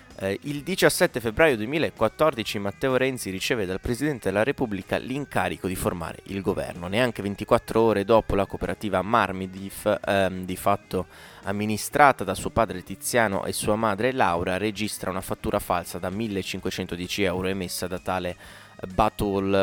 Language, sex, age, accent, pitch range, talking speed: Italian, male, 20-39, native, 95-115 Hz, 145 wpm